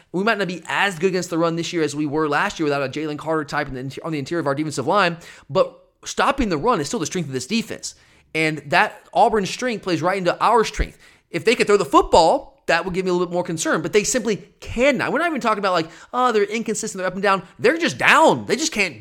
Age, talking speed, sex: 30-49, 270 wpm, male